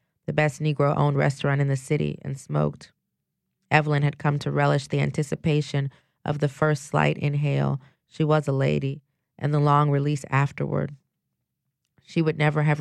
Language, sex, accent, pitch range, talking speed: English, female, American, 135-155 Hz, 160 wpm